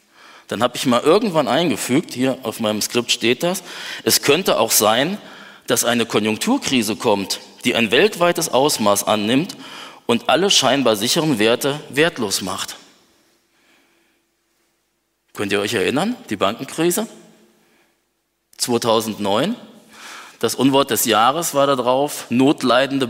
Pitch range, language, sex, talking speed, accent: 115-155 Hz, German, male, 120 wpm, German